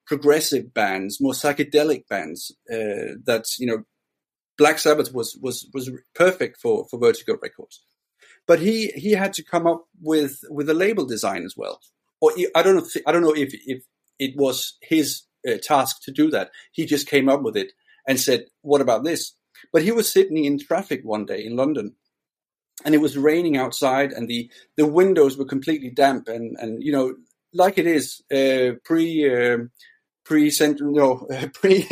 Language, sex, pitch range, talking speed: English, male, 135-190 Hz, 190 wpm